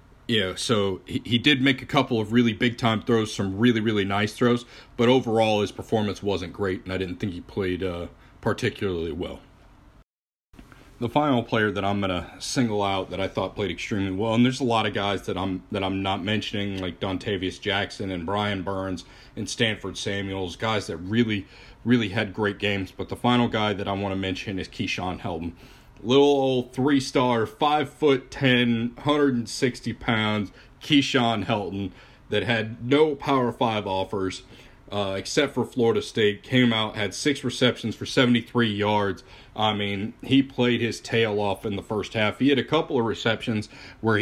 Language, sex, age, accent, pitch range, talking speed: English, male, 40-59, American, 100-125 Hz, 180 wpm